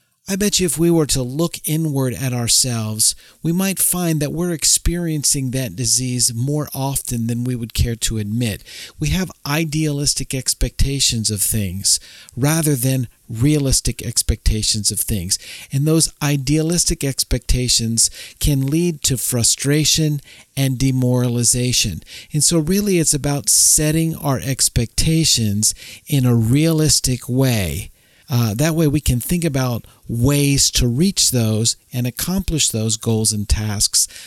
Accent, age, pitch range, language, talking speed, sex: American, 50-69, 115-155 Hz, English, 135 wpm, male